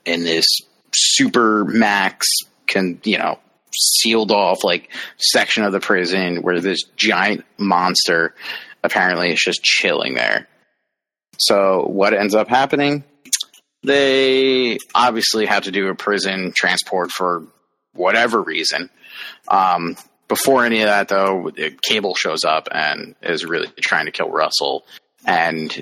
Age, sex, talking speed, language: 30-49, male, 130 wpm, English